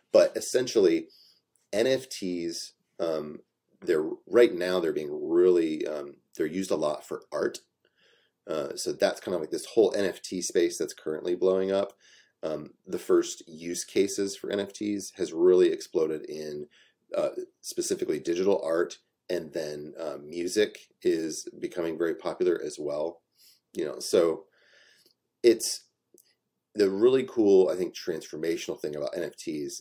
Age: 30-49